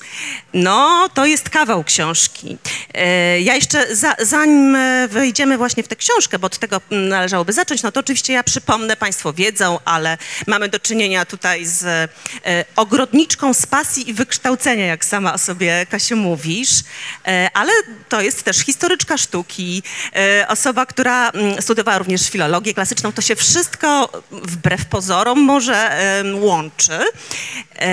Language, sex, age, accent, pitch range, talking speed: Polish, female, 40-59, native, 180-255 Hz, 130 wpm